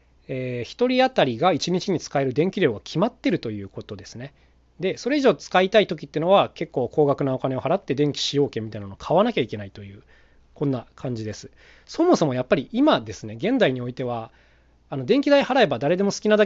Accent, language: native, Japanese